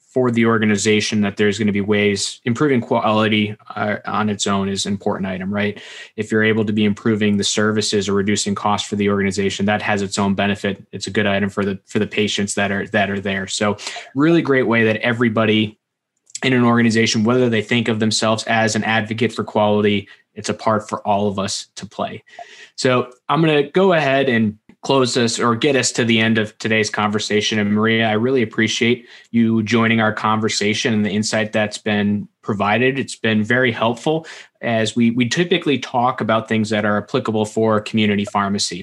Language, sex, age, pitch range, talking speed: English, male, 20-39, 105-120 Hz, 200 wpm